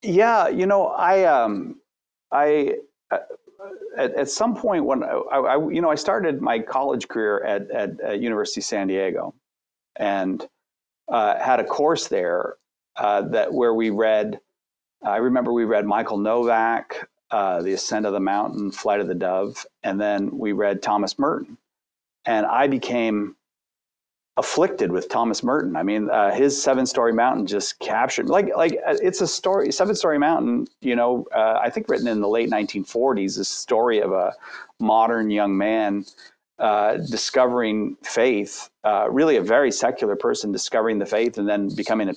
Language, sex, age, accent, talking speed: English, male, 40-59, American, 170 wpm